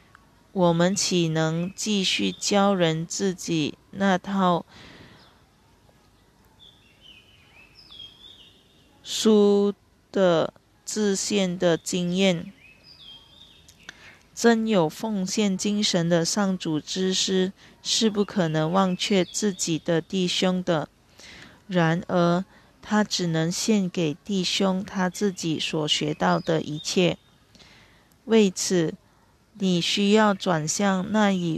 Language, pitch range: Chinese, 165-200 Hz